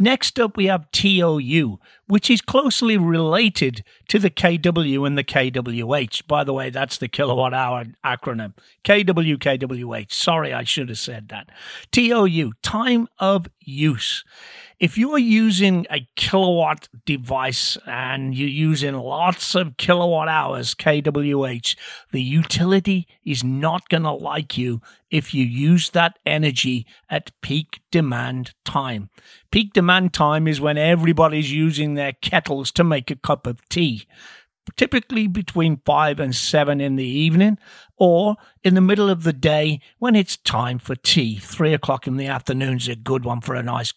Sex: male